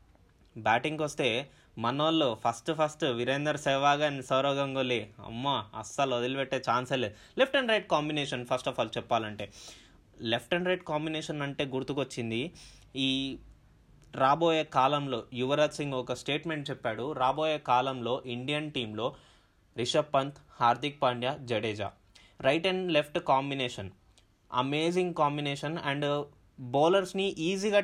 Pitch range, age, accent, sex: 125-155 Hz, 20-39, native, male